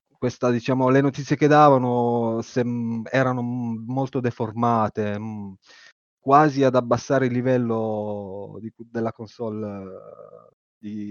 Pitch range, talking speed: 110-130 Hz, 125 wpm